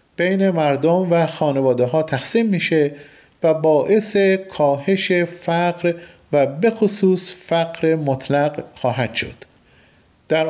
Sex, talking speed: male, 105 wpm